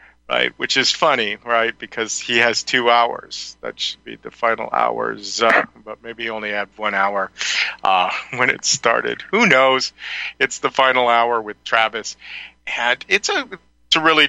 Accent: American